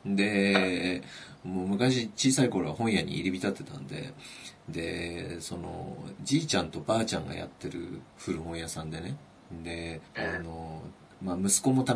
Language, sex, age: Japanese, male, 40-59